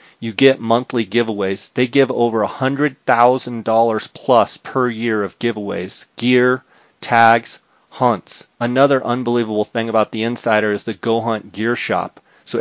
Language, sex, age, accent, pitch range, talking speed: English, male, 30-49, American, 110-125 Hz, 150 wpm